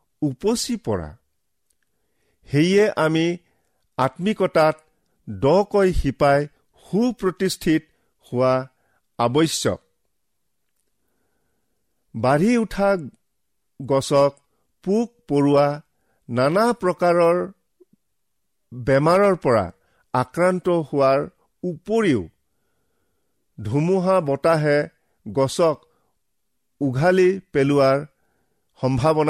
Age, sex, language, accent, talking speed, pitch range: 50-69, male, English, Indian, 50 wpm, 135-185 Hz